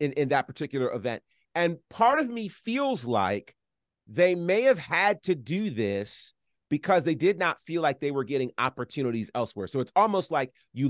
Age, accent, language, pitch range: 30-49, American, English, 130-180 Hz